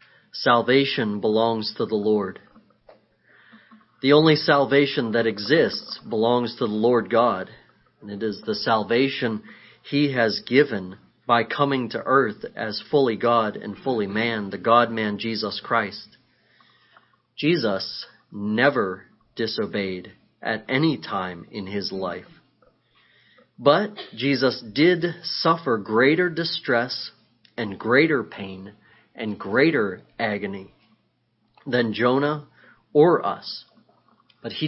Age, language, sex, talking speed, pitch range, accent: 40-59, English, male, 110 wpm, 110-145 Hz, American